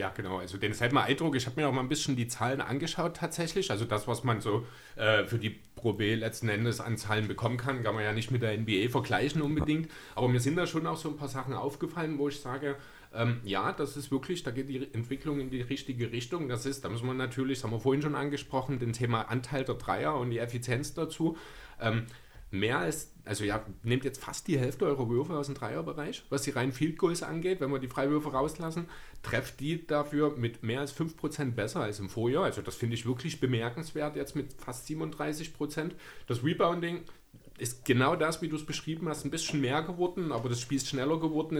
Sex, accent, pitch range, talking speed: male, German, 120-150 Hz, 220 wpm